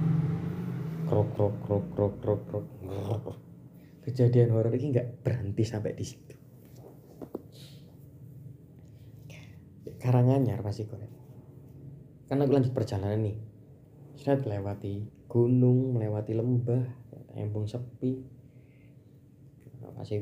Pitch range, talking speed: 110-130 Hz, 90 wpm